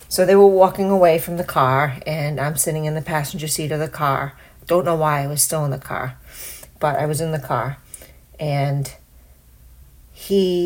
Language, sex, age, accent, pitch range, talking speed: English, female, 40-59, American, 140-165 Hz, 195 wpm